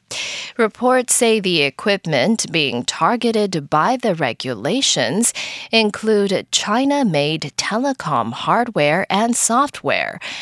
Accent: American